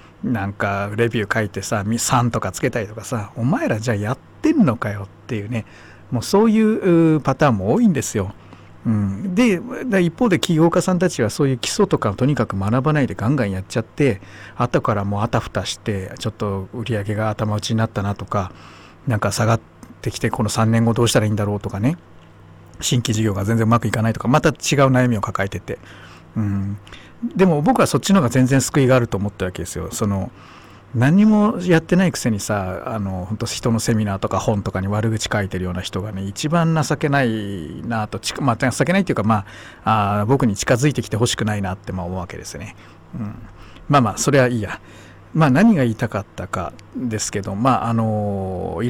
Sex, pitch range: male, 100-135 Hz